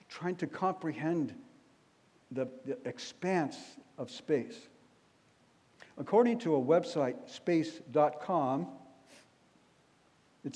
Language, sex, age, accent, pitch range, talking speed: English, male, 60-79, American, 140-200 Hz, 80 wpm